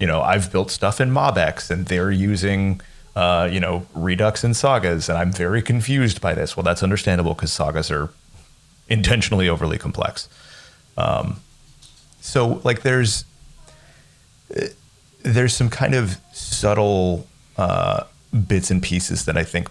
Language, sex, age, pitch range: English, male, 30-49, 85-110 Hz